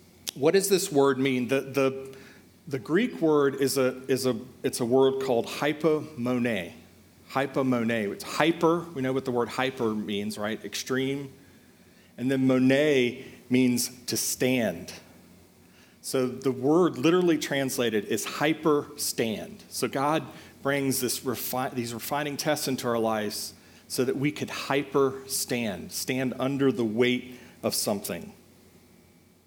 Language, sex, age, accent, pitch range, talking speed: English, male, 40-59, American, 120-140 Hz, 135 wpm